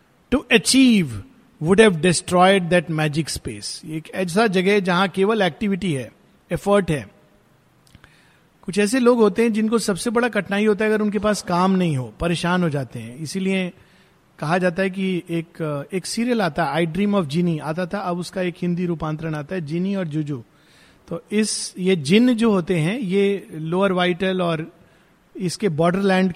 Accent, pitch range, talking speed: native, 170-235 Hz, 170 wpm